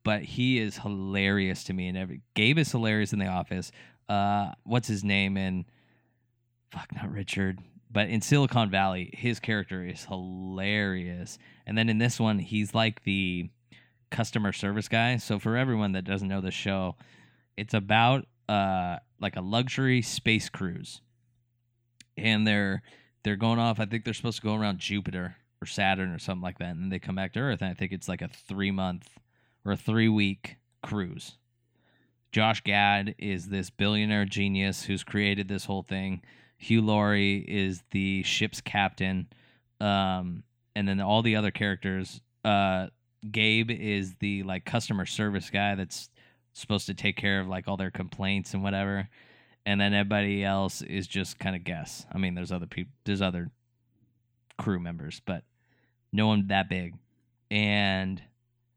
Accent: American